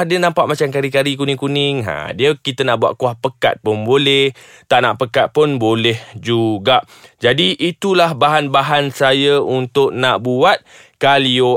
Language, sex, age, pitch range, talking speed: Malay, male, 20-39, 125-175 Hz, 145 wpm